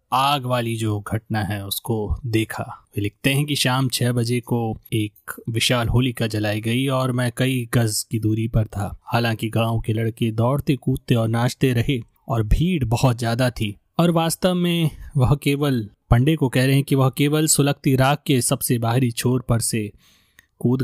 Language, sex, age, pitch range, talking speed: Hindi, male, 30-49, 110-135 Hz, 185 wpm